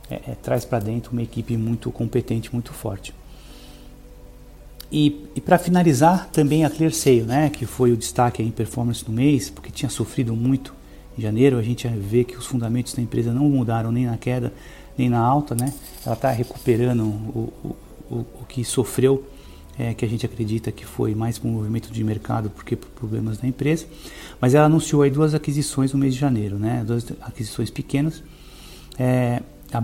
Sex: male